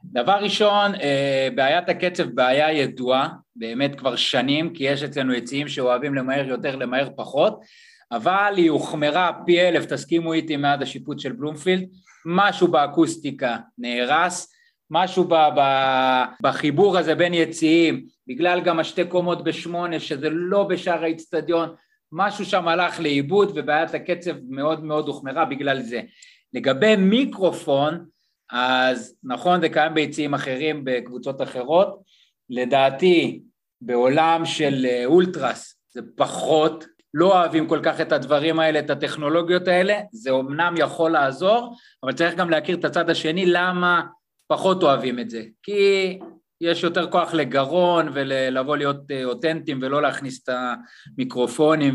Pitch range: 135-175 Hz